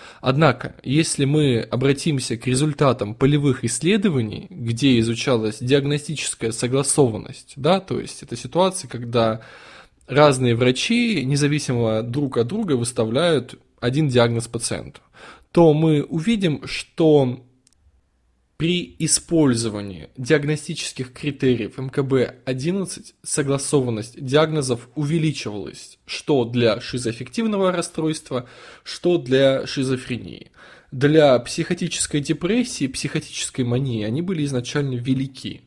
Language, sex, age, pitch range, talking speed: Russian, male, 20-39, 120-160 Hz, 95 wpm